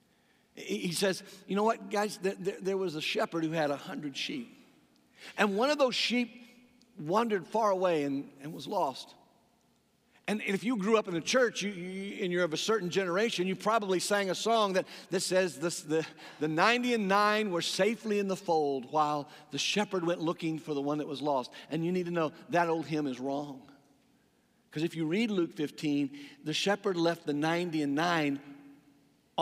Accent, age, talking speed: American, 50-69, 200 wpm